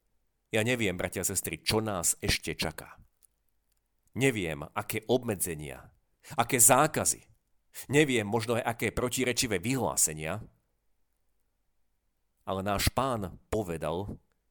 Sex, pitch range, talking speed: male, 90-125 Hz, 100 wpm